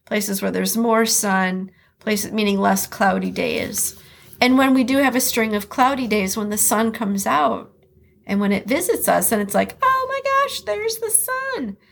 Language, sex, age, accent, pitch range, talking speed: English, female, 40-59, American, 195-255 Hz, 195 wpm